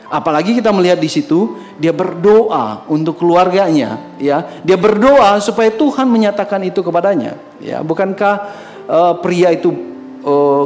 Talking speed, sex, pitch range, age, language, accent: 130 wpm, male, 150-230 Hz, 40-59, Indonesian, native